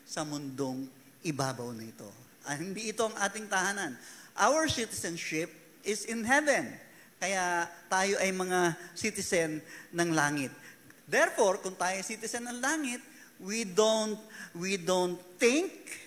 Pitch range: 160-225 Hz